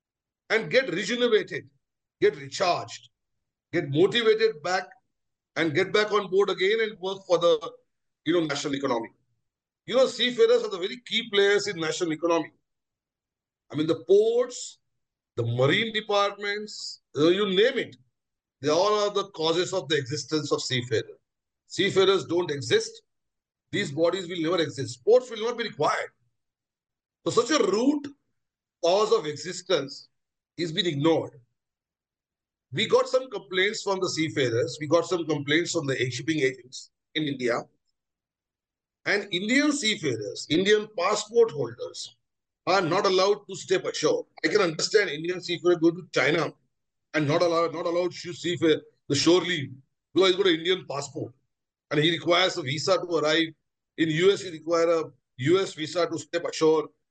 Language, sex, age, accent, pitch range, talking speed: English, male, 50-69, Indian, 150-215 Hz, 155 wpm